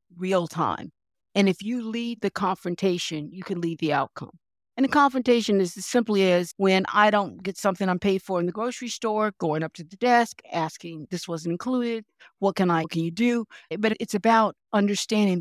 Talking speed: 205 wpm